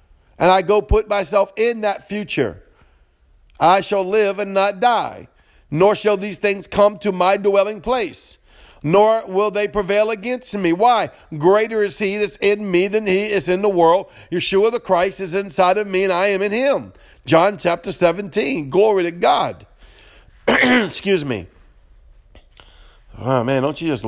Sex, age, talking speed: male, 50-69, 165 wpm